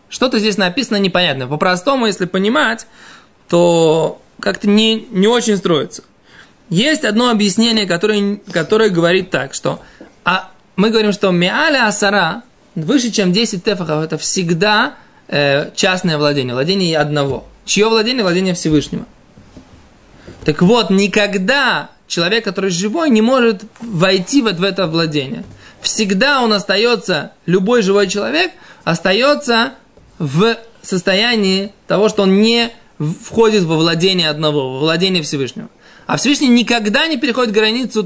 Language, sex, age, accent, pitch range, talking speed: Russian, male, 20-39, native, 180-225 Hz, 130 wpm